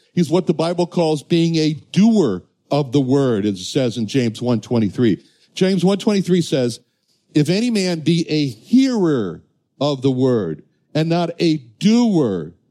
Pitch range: 120-170 Hz